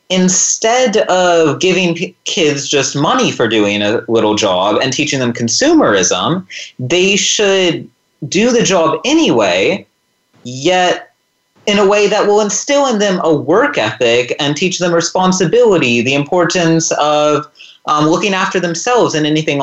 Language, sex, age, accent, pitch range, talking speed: English, male, 30-49, American, 145-220 Hz, 145 wpm